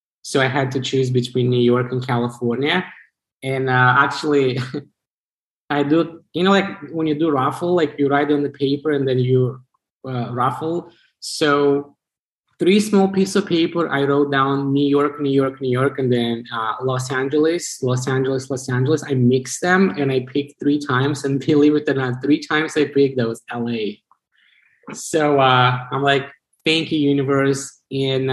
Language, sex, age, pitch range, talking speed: English, male, 20-39, 125-145 Hz, 180 wpm